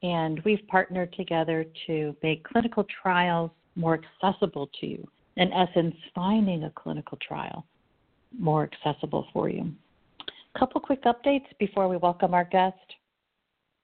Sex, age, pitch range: female, 50-69, 150-190 Hz